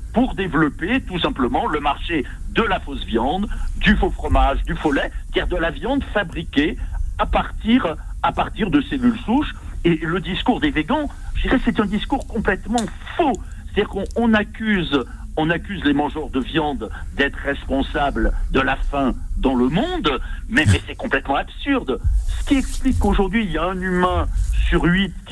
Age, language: 60-79, French